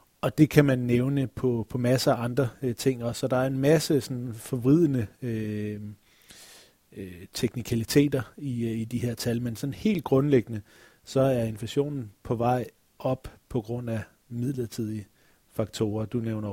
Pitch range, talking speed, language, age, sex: 110-130 Hz, 165 wpm, Danish, 30-49, male